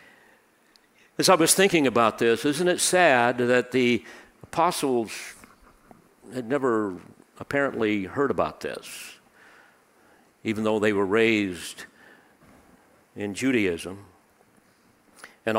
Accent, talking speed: American, 100 wpm